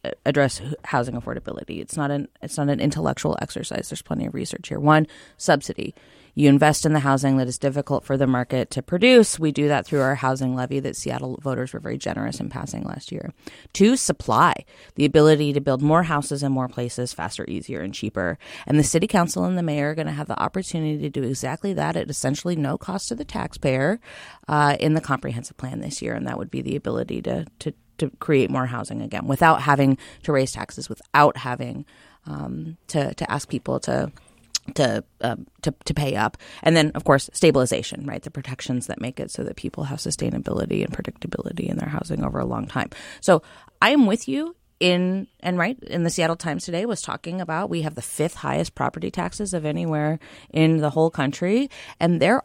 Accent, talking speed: American, 210 wpm